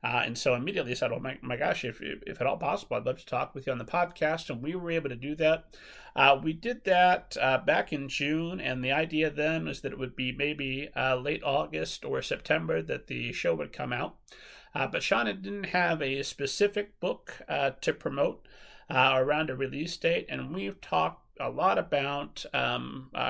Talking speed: 215 wpm